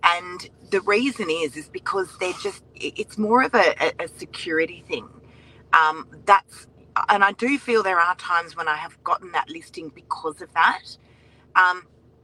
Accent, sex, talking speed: Australian, female, 165 wpm